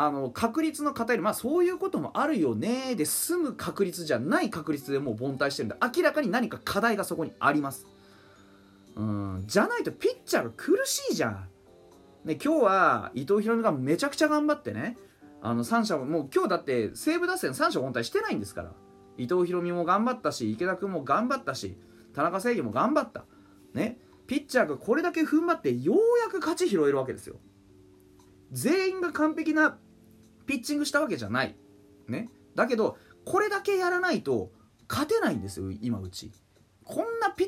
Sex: male